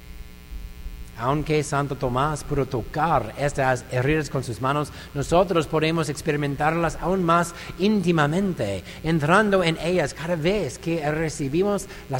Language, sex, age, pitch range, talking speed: English, male, 50-69, 85-140 Hz, 120 wpm